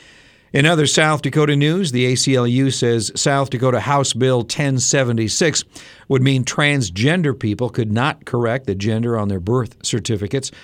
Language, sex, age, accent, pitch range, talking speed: English, male, 50-69, American, 105-135 Hz, 145 wpm